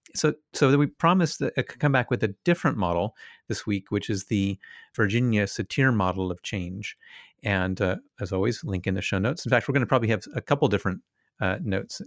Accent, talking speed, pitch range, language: American, 210 wpm, 95-115 Hz, English